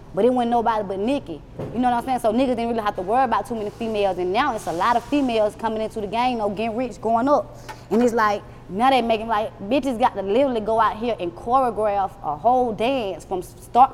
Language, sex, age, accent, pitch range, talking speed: English, female, 20-39, American, 205-270 Hz, 265 wpm